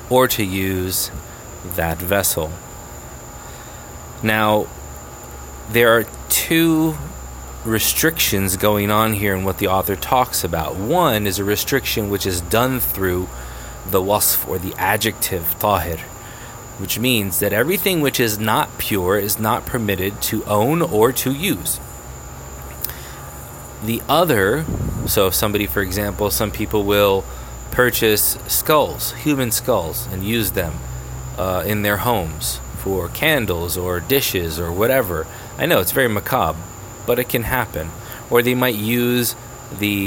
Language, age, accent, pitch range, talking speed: English, 20-39, American, 90-120 Hz, 135 wpm